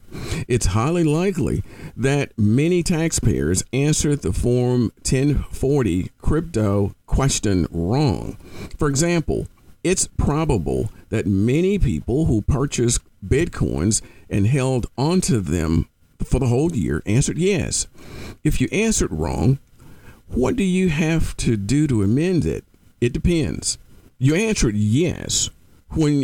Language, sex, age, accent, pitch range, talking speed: English, male, 50-69, American, 100-145 Hz, 120 wpm